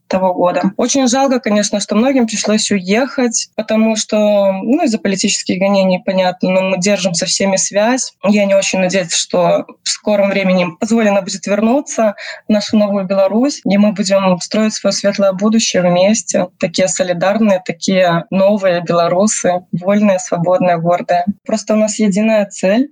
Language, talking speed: Russian, 150 wpm